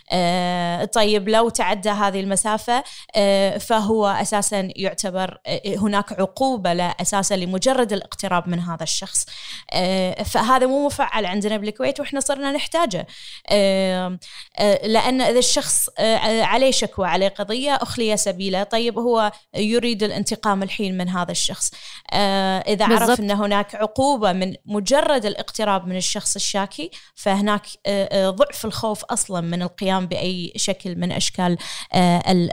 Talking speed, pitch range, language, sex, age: 115 wpm, 190-230 Hz, Arabic, female, 20-39